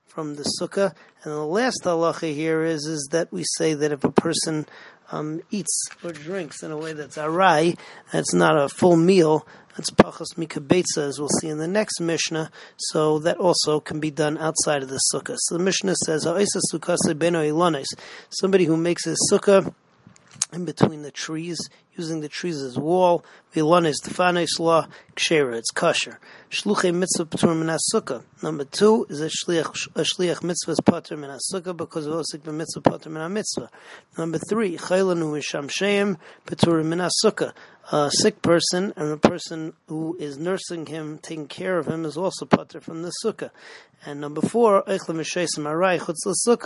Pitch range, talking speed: 155-180 Hz, 160 wpm